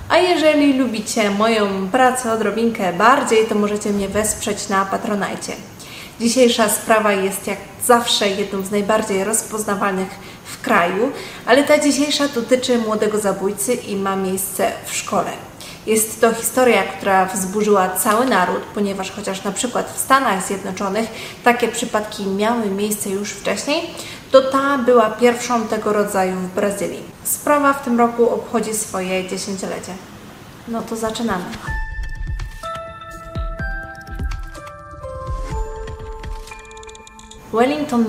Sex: female